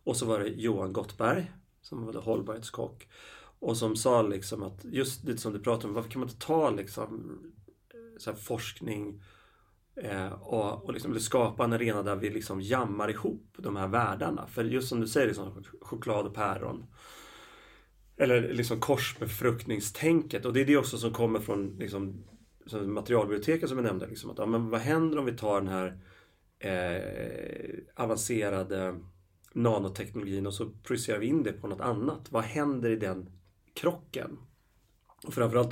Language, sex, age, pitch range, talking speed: Swedish, male, 30-49, 100-125 Hz, 165 wpm